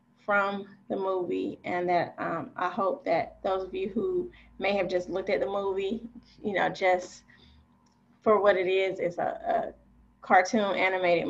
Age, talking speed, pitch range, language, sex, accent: 20-39, 170 wpm, 180-215 Hz, English, female, American